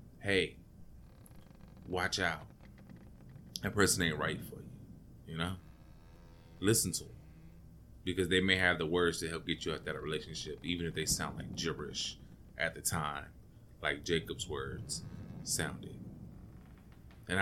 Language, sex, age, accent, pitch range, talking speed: English, male, 20-39, American, 80-95 Hz, 145 wpm